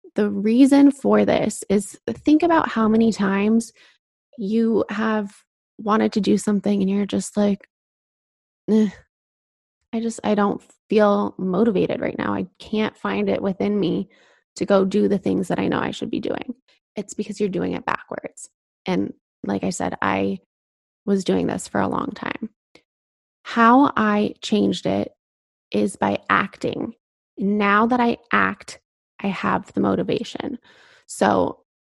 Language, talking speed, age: English, 155 wpm, 20-39